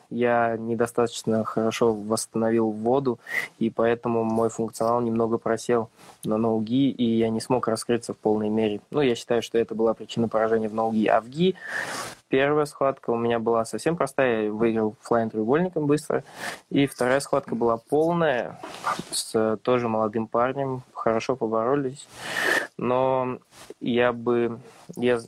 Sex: male